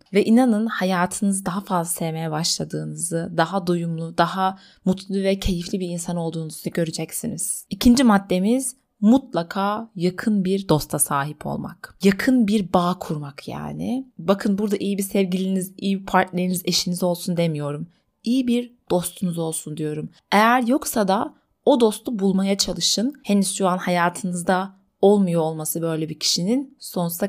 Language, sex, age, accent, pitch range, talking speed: Turkish, female, 30-49, native, 170-215 Hz, 140 wpm